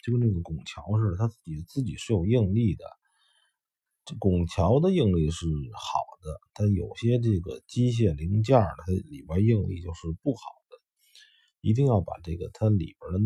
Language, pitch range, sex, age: Chinese, 90-125 Hz, male, 50-69